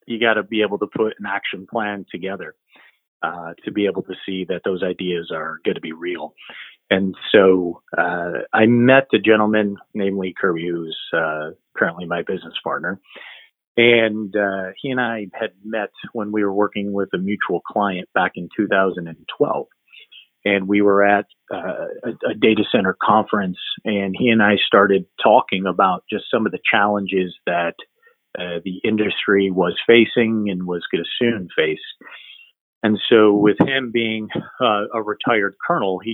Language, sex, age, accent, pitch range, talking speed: English, male, 40-59, American, 95-110 Hz, 170 wpm